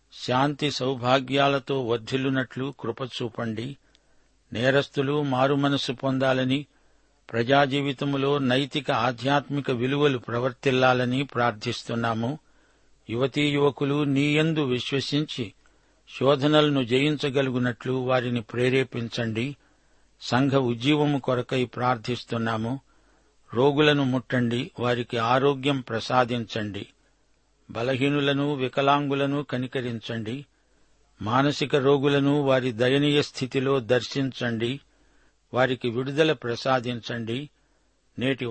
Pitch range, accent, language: 120-145 Hz, native, Telugu